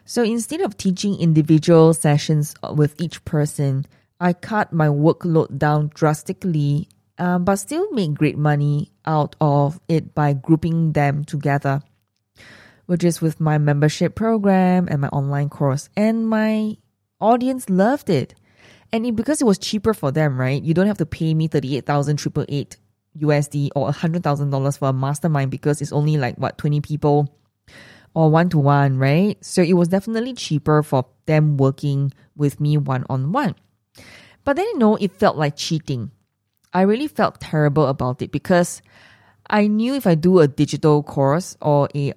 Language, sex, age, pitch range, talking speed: English, female, 20-39, 140-185 Hz, 160 wpm